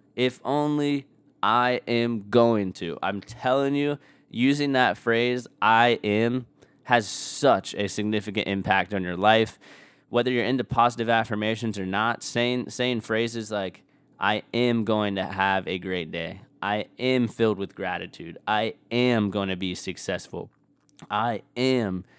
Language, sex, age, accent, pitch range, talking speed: English, male, 20-39, American, 105-125 Hz, 145 wpm